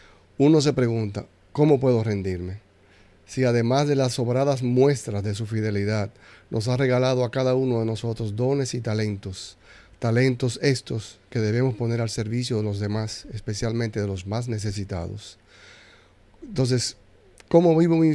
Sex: male